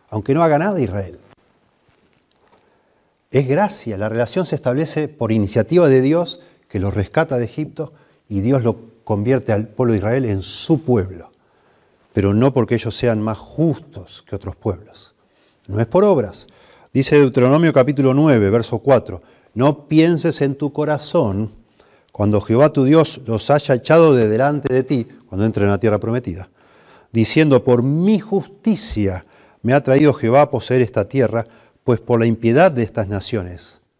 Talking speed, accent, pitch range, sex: 160 wpm, Argentinian, 105-140 Hz, male